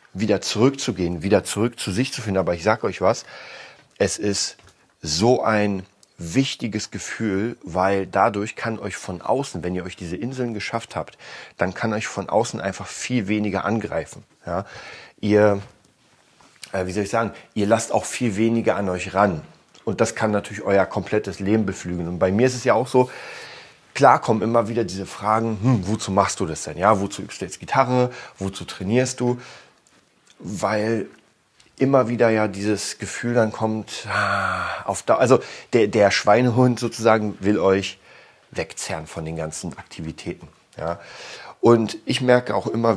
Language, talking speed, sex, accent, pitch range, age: German, 170 wpm, male, German, 100-120 Hz, 40-59